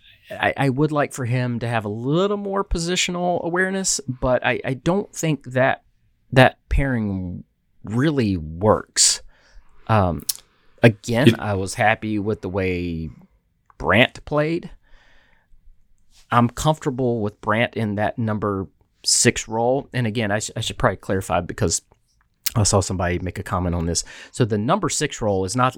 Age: 30-49